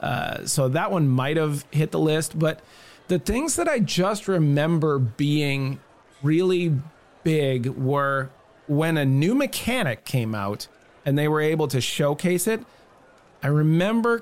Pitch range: 130-165 Hz